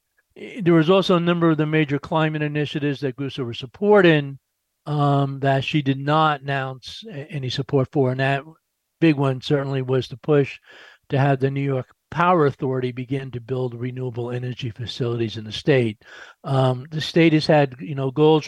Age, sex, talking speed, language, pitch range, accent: 50-69, male, 180 wpm, English, 130-150 Hz, American